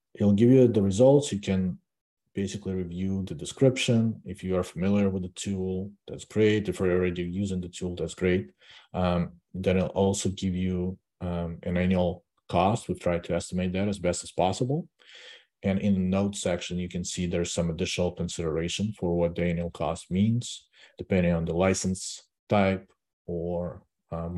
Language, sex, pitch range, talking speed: English, male, 85-100 Hz, 175 wpm